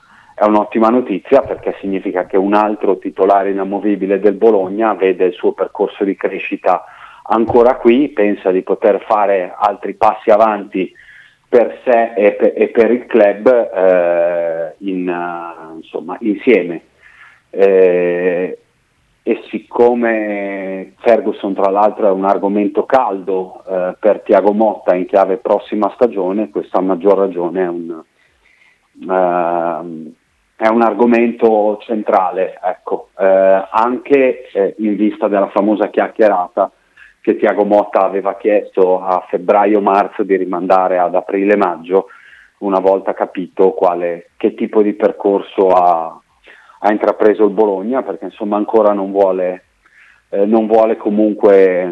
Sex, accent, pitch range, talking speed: male, native, 95-110 Hz, 120 wpm